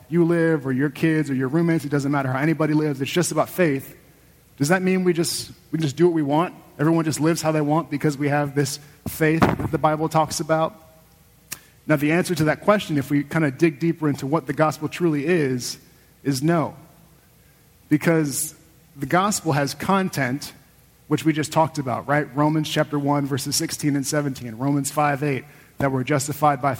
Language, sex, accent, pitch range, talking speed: English, male, American, 140-165 Hz, 195 wpm